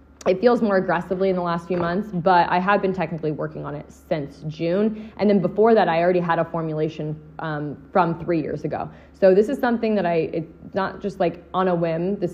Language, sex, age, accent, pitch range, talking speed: English, female, 20-39, American, 155-190 Hz, 225 wpm